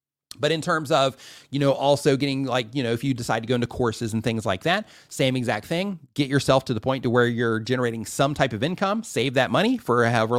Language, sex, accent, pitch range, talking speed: English, male, American, 110-145 Hz, 250 wpm